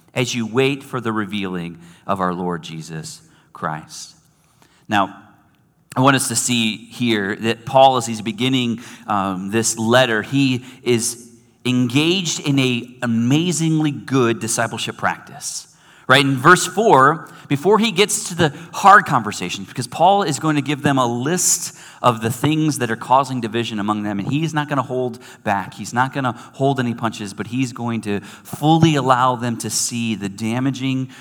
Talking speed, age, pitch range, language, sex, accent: 170 wpm, 30-49, 115-155 Hz, English, male, American